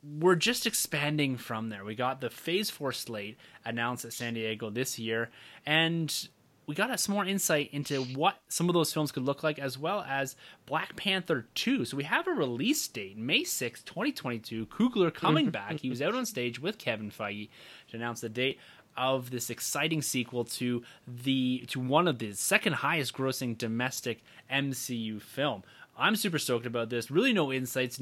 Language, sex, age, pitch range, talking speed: English, male, 20-39, 120-160 Hz, 185 wpm